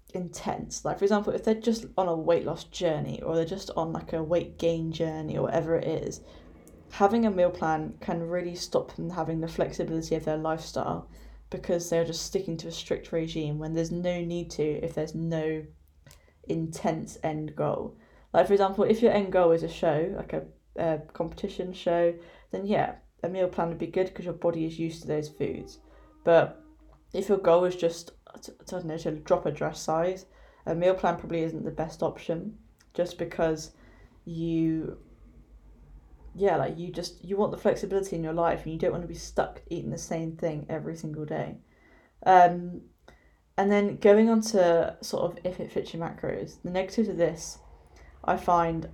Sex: female